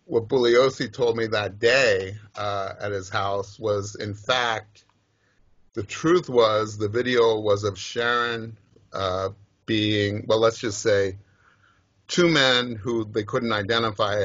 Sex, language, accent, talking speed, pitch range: male, English, American, 140 wpm, 100-115 Hz